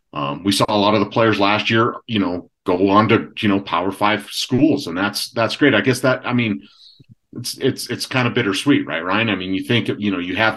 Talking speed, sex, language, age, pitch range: 255 wpm, male, English, 40-59, 100-120 Hz